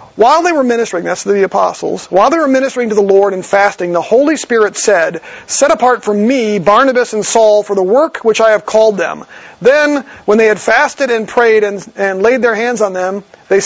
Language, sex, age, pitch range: English, male, 40-59, 205-260 Hz